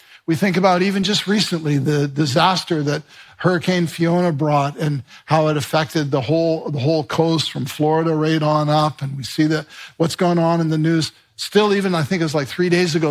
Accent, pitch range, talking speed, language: American, 150-180 Hz, 210 wpm, English